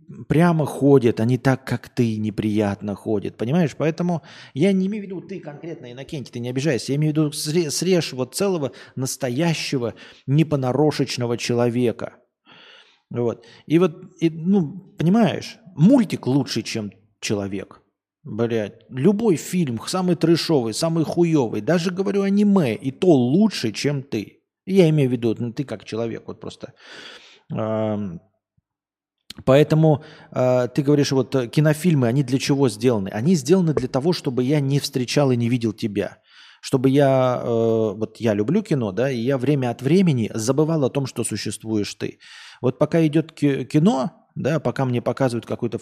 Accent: native